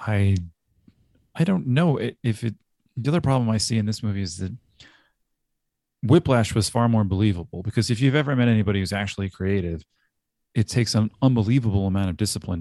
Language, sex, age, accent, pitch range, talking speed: English, male, 30-49, American, 90-115 Hz, 180 wpm